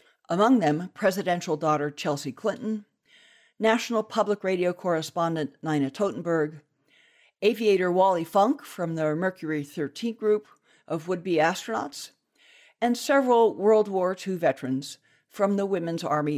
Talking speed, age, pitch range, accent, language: 120 wpm, 60-79, 150-215 Hz, American, English